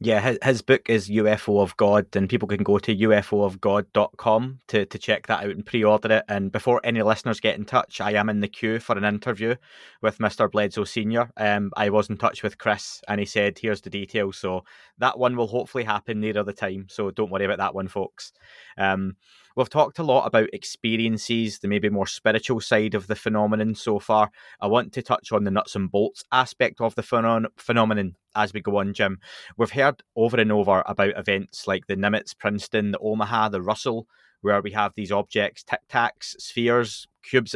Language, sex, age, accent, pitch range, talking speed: English, male, 20-39, British, 100-115 Hz, 205 wpm